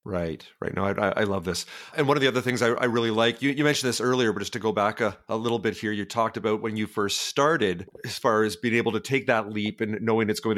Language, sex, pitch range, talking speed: English, male, 100-120 Hz, 295 wpm